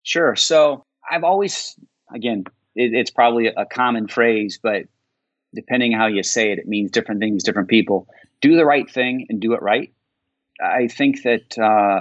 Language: English